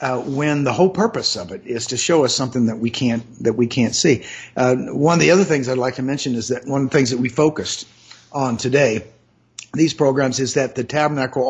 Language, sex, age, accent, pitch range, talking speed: English, male, 50-69, American, 125-155 Hz, 240 wpm